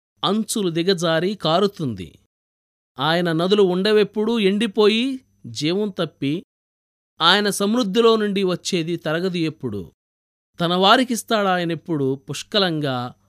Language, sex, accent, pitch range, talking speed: Telugu, male, native, 135-200 Hz, 80 wpm